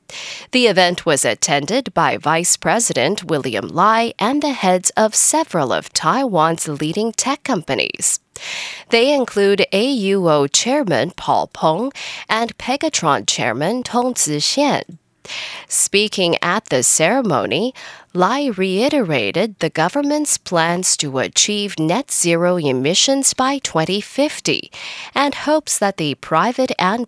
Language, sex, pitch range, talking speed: English, female, 170-265 Hz, 115 wpm